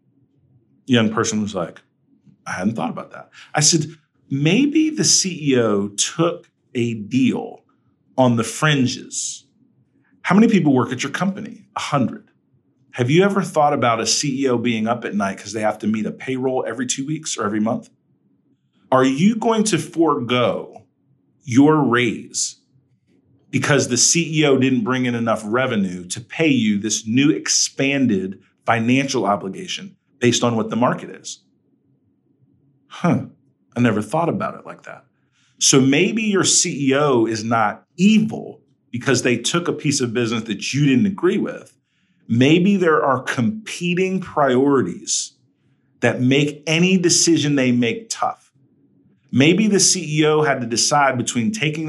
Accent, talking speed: American, 150 wpm